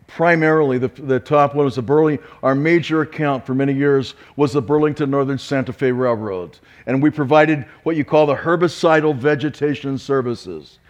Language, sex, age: English, male, 50-69